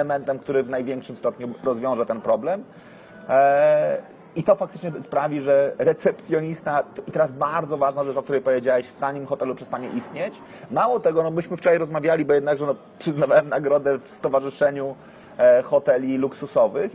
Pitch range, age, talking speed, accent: 140-175 Hz, 30-49, 155 wpm, native